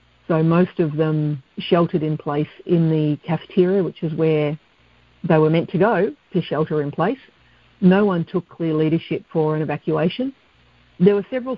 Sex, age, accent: female, 50-69, Australian